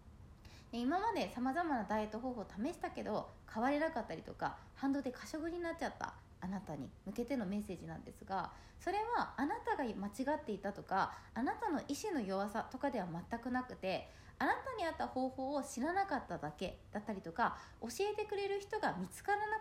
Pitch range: 205-310 Hz